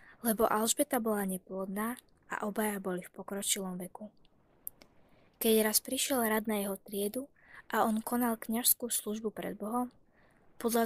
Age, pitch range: 20-39, 195-230 Hz